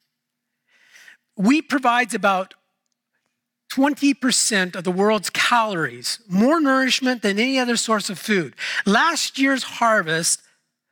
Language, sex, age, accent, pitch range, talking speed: English, male, 40-59, American, 200-265 Hz, 105 wpm